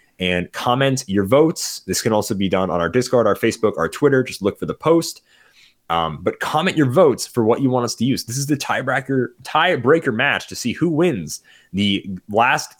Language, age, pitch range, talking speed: English, 20-39, 90-120 Hz, 210 wpm